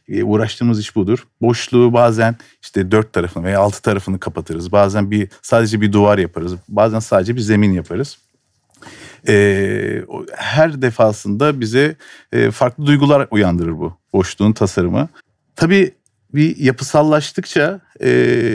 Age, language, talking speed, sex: 50-69, Turkish, 115 wpm, male